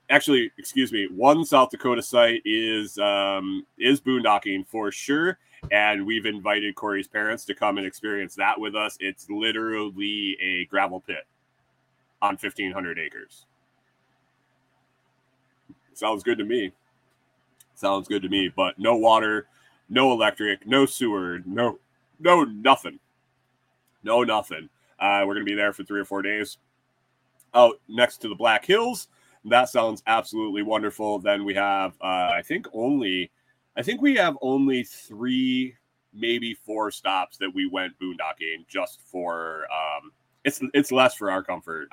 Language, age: English, 30-49